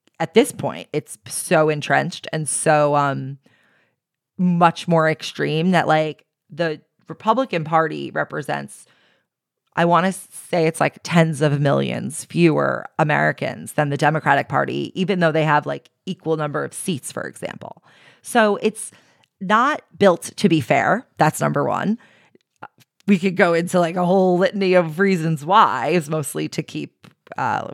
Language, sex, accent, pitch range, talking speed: English, female, American, 155-195 Hz, 150 wpm